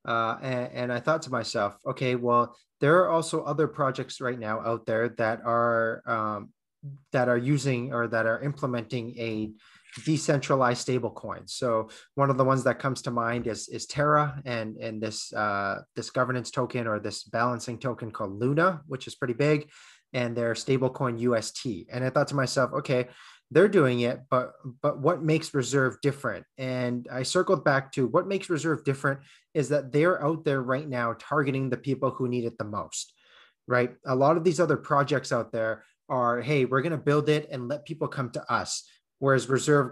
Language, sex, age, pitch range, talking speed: English, male, 30-49, 120-145 Hz, 190 wpm